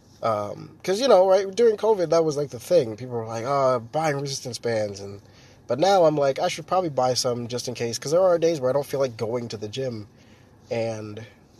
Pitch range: 115-140 Hz